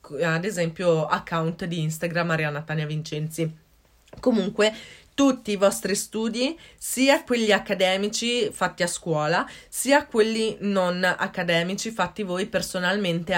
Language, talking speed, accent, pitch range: Italian, 115 wpm, native, 170-210 Hz